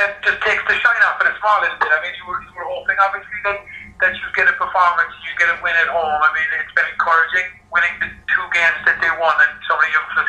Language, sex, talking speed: English, male, 270 wpm